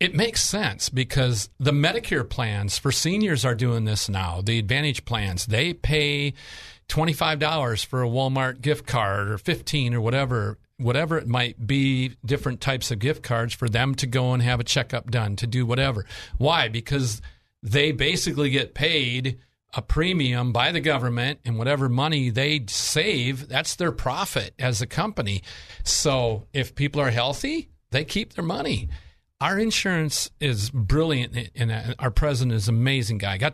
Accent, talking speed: American, 165 wpm